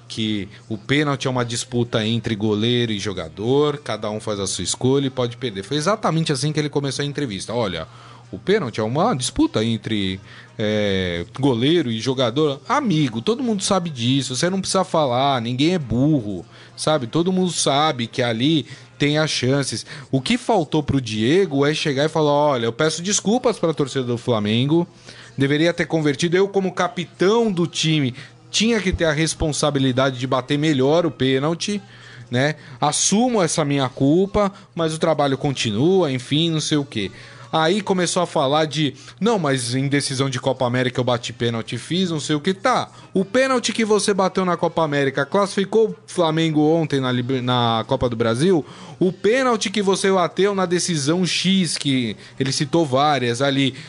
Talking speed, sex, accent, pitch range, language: 180 wpm, male, Brazilian, 125-175 Hz, Portuguese